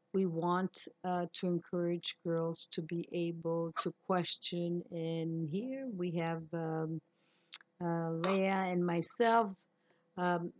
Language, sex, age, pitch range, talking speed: English, female, 50-69, 170-195 Hz, 120 wpm